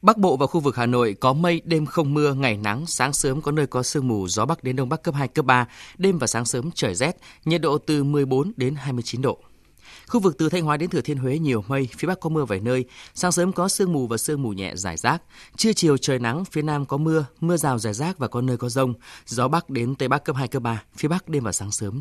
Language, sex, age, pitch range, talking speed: Vietnamese, male, 20-39, 115-155 Hz, 280 wpm